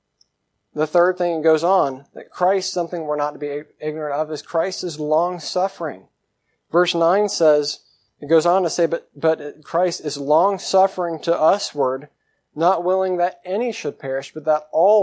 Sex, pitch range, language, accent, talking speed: male, 150-175 Hz, English, American, 170 wpm